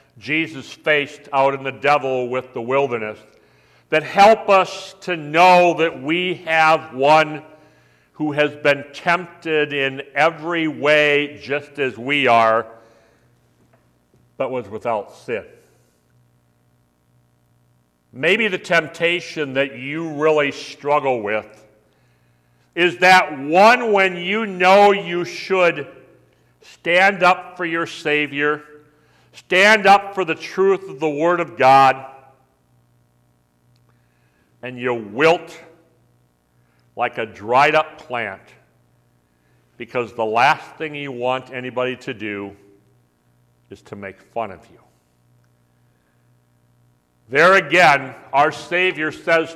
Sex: male